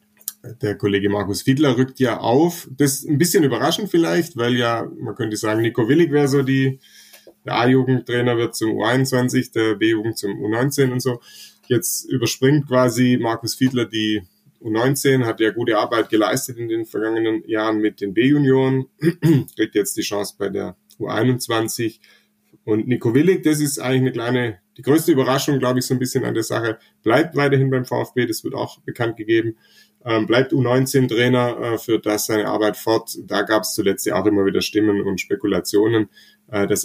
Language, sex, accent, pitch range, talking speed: German, male, German, 105-130 Hz, 170 wpm